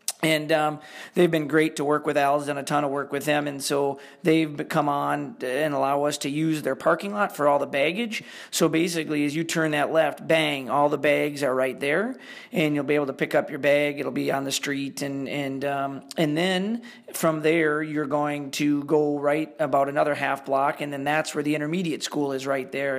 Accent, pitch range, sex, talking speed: American, 140-160 Hz, male, 220 wpm